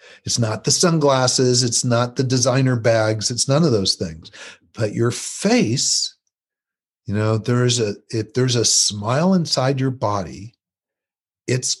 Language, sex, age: English, male, 50-69